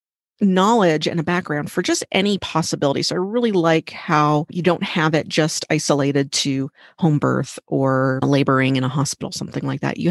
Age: 30-49